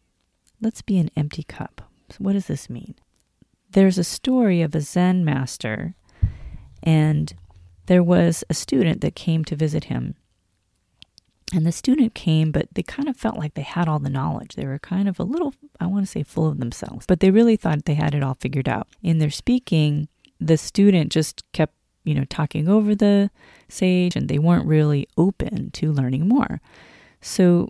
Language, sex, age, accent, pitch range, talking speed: English, female, 30-49, American, 145-185 Hz, 185 wpm